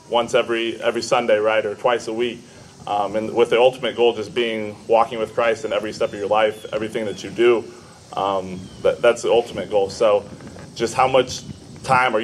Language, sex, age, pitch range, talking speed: English, male, 20-39, 105-120 Hz, 205 wpm